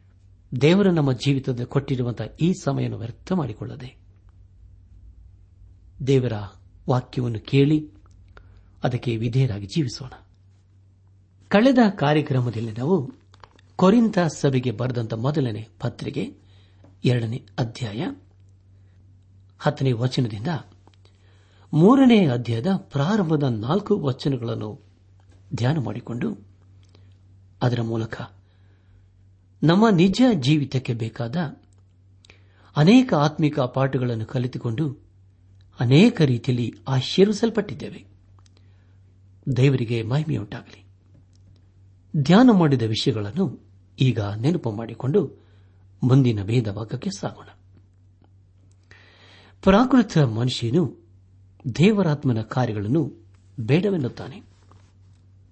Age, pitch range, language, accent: 60-79, 95-140 Hz, Kannada, native